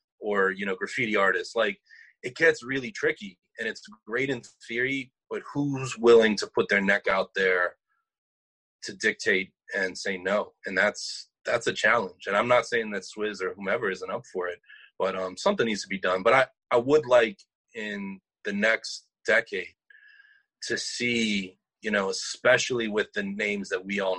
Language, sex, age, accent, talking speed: English, male, 30-49, American, 180 wpm